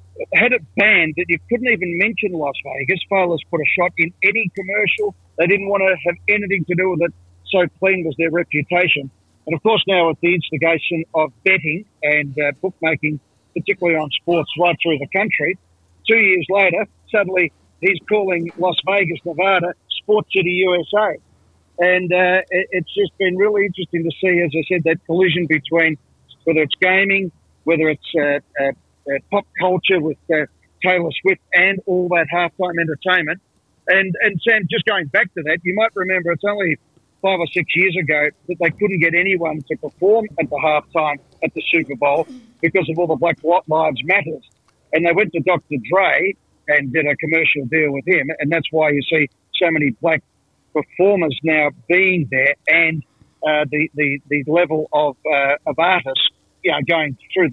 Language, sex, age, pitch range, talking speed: English, male, 50-69, 150-185 Hz, 185 wpm